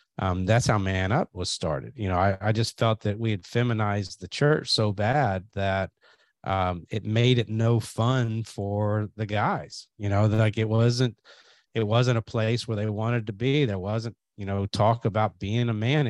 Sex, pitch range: male, 95-120 Hz